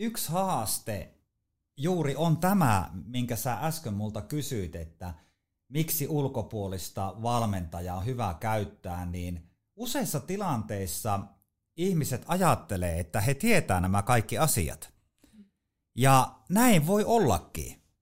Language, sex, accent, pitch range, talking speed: Finnish, male, native, 100-145 Hz, 105 wpm